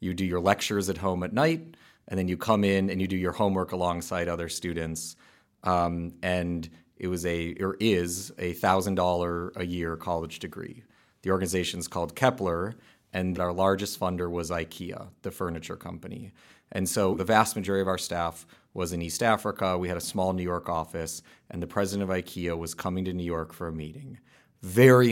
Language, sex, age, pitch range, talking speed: English, male, 30-49, 90-105 Hz, 190 wpm